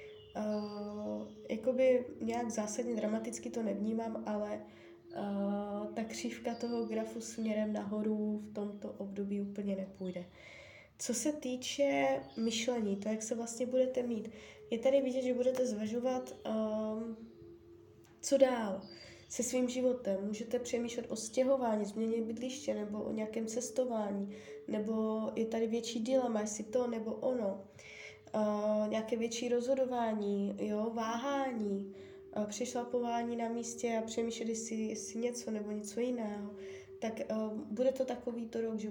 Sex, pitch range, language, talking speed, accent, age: female, 210-245 Hz, Czech, 135 wpm, native, 10-29